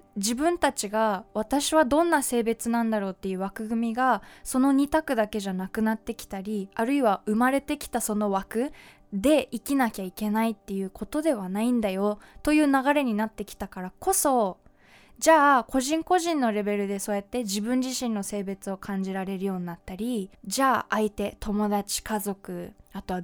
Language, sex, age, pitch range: Japanese, female, 20-39, 200-270 Hz